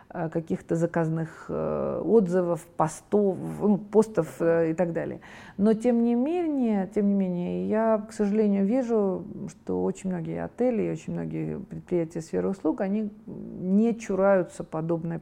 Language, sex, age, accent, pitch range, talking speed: Russian, female, 40-59, native, 170-215 Hz, 130 wpm